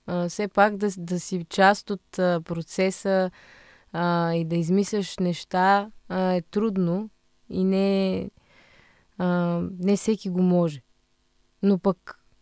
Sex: female